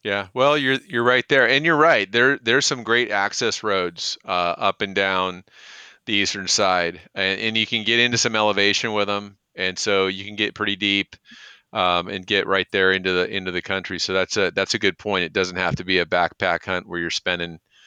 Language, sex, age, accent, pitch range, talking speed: English, male, 40-59, American, 95-110 Hz, 225 wpm